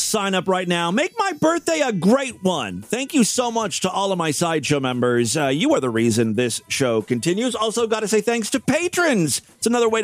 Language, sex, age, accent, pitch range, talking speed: English, male, 40-59, American, 145-240 Hz, 225 wpm